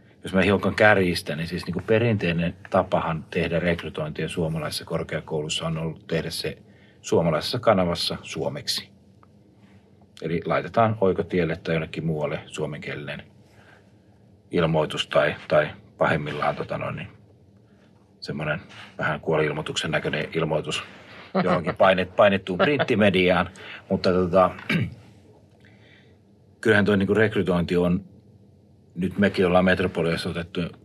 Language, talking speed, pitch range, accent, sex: Finnish, 105 wpm, 85-105 Hz, native, male